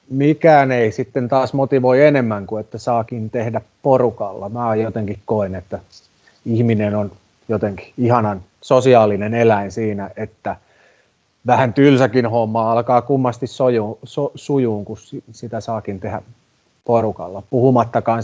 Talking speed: 115 wpm